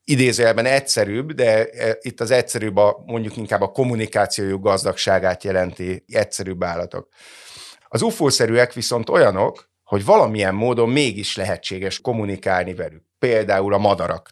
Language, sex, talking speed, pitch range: Hungarian, male, 120 wpm, 95-120 Hz